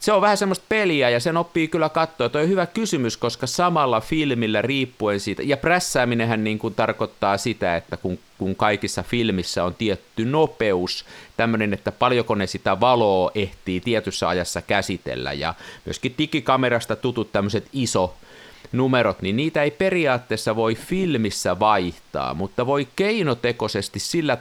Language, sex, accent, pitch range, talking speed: Finnish, male, native, 100-130 Hz, 145 wpm